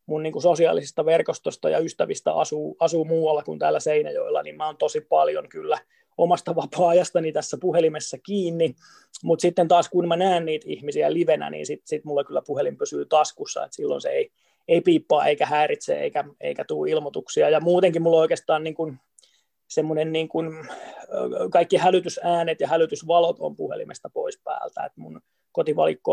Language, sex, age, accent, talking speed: Finnish, male, 20-39, native, 160 wpm